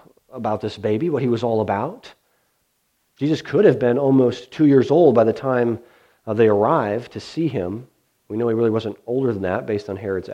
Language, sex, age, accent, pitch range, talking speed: English, male, 40-59, American, 115-160 Hz, 205 wpm